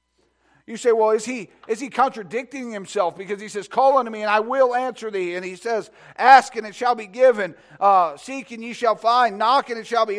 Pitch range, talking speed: 180-235 Hz, 235 wpm